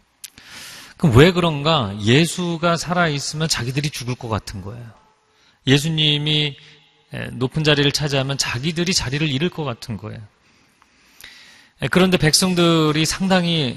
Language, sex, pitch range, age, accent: Korean, male, 115-165 Hz, 40-59, native